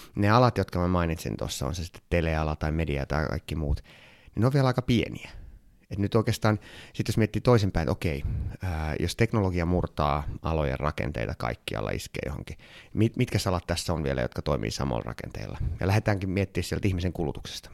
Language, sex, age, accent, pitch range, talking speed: Finnish, male, 30-49, native, 80-105 Hz, 185 wpm